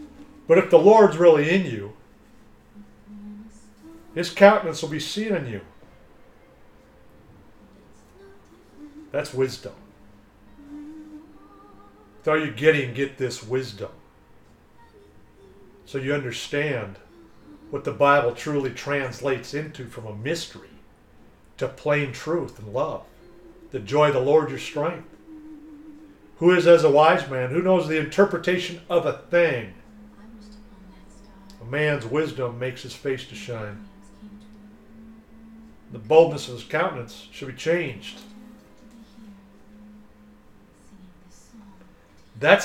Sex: male